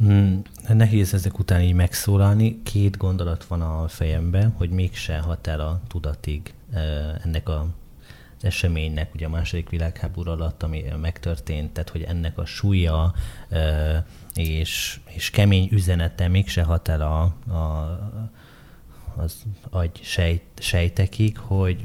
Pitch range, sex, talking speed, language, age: 80-100 Hz, male, 130 wpm, Hungarian, 30-49